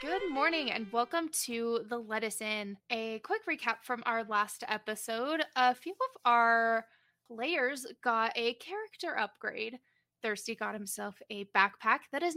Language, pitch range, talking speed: English, 220-295 Hz, 150 wpm